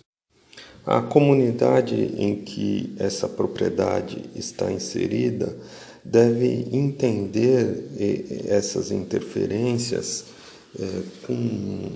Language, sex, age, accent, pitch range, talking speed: Portuguese, male, 50-69, Brazilian, 100-120 Hz, 65 wpm